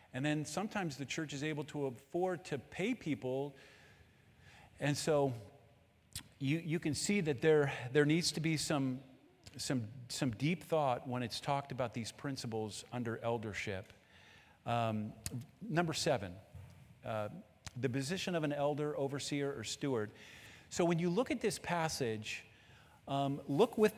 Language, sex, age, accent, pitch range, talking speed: English, male, 50-69, American, 110-145 Hz, 150 wpm